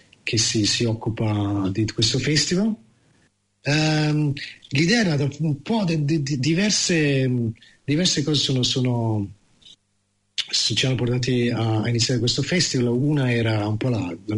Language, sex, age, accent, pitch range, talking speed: Italian, male, 40-59, native, 110-140 Hz, 140 wpm